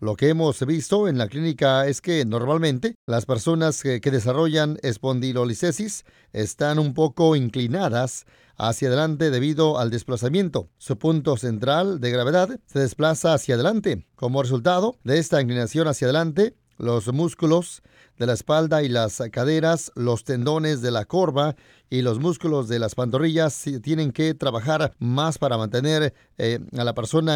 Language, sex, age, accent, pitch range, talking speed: Spanish, male, 40-59, Mexican, 125-160 Hz, 150 wpm